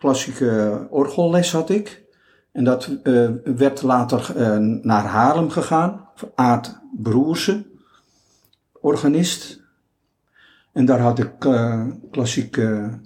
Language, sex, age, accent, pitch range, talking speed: Dutch, male, 50-69, Dutch, 105-130 Hz, 100 wpm